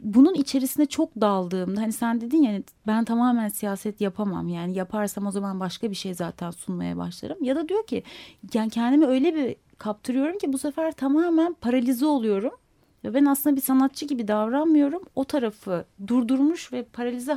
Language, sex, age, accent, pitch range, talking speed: Turkish, female, 30-49, native, 210-280 Hz, 165 wpm